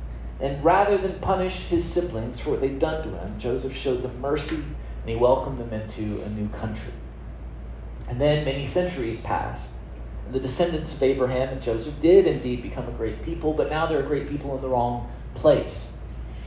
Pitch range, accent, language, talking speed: 115-155 Hz, American, English, 190 wpm